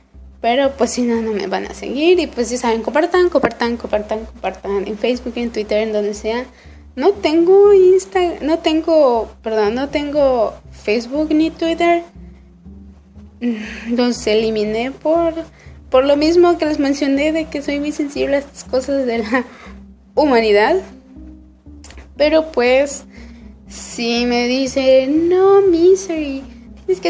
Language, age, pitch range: Spanish, 20-39, 220-290 Hz